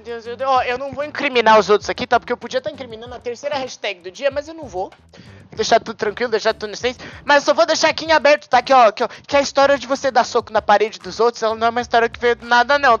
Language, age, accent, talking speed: Portuguese, 20-39, Brazilian, 320 wpm